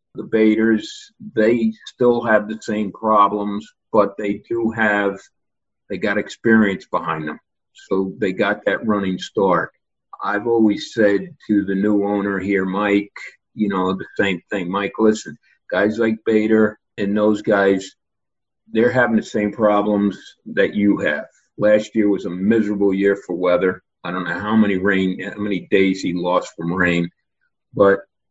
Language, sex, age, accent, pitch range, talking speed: English, male, 50-69, American, 100-115 Hz, 155 wpm